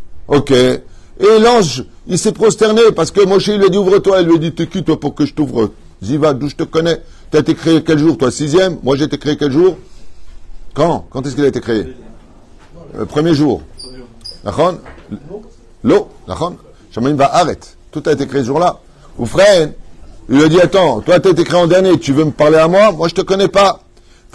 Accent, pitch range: French, 145-190 Hz